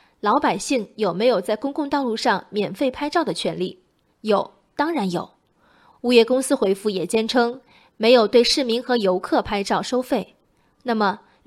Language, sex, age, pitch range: Chinese, female, 20-39, 210-270 Hz